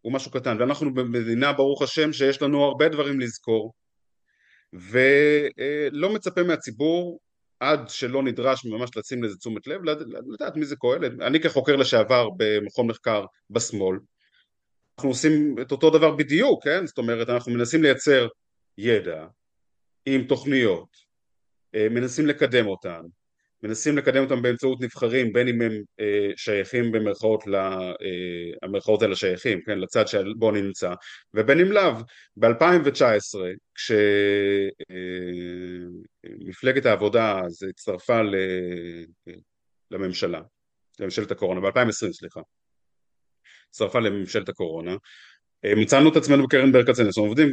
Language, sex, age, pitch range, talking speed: Hebrew, male, 30-49, 100-145 Hz, 120 wpm